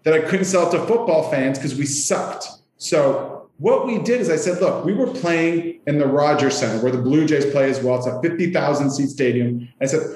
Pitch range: 135-170 Hz